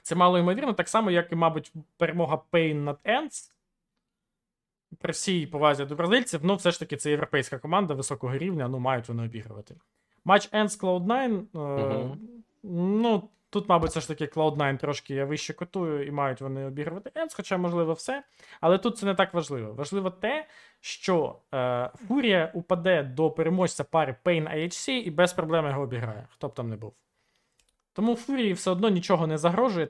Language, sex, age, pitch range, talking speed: Ukrainian, male, 20-39, 140-190 Hz, 175 wpm